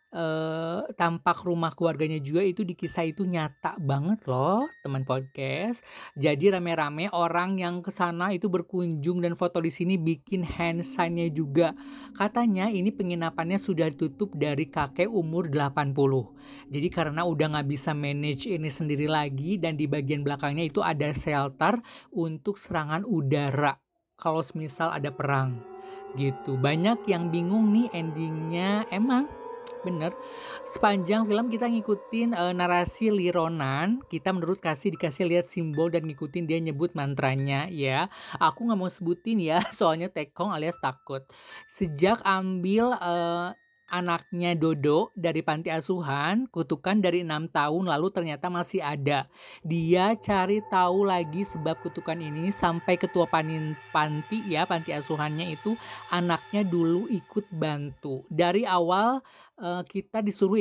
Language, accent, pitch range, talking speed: Indonesian, native, 155-195 Hz, 135 wpm